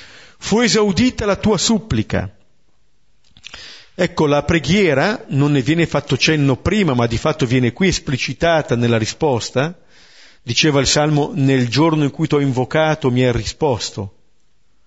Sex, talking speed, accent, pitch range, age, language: male, 140 wpm, native, 125-180 Hz, 50-69, Italian